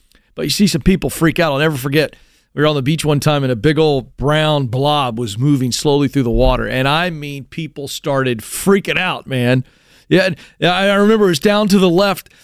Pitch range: 140-205 Hz